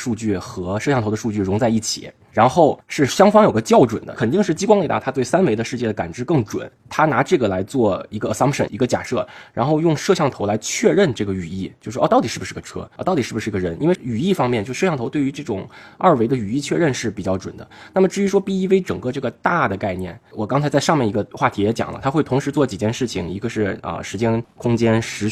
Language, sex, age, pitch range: Chinese, male, 20-39, 100-135 Hz